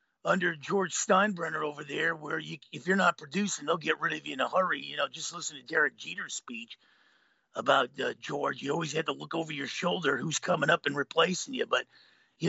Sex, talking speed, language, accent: male, 220 wpm, English, American